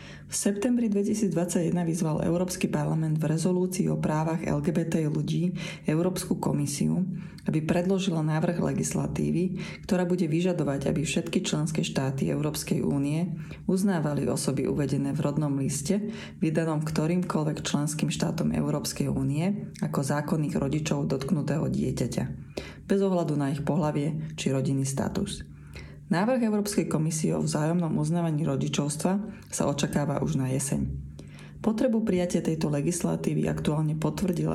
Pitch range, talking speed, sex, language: 145-180 Hz, 120 wpm, female, Slovak